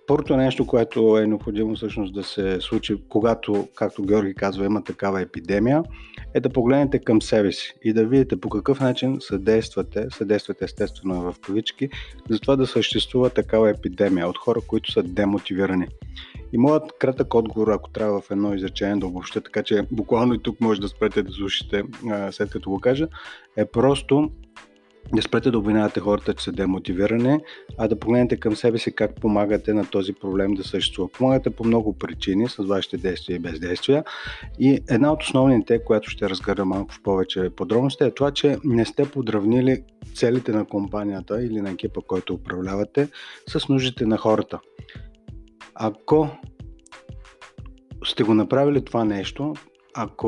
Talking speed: 165 wpm